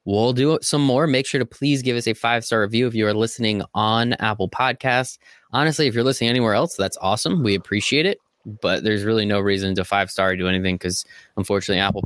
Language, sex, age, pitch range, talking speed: English, male, 20-39, 100-130 Hz, 230 wpm